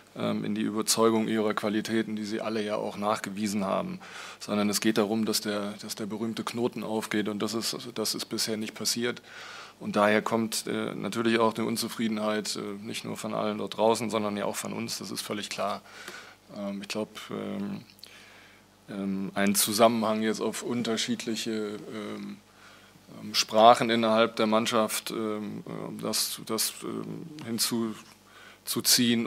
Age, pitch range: 20-39, 105-115 Hz